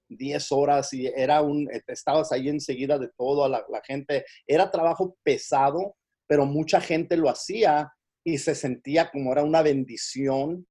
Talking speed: 160 wpm